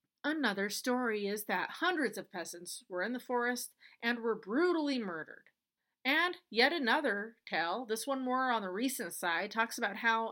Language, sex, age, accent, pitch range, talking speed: English, female, 30-49, American, 195-265 Hz, 170 wpm